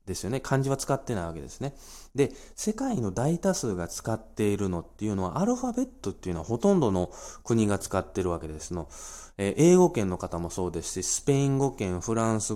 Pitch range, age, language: 90-135 Hz, 20-39, Japanese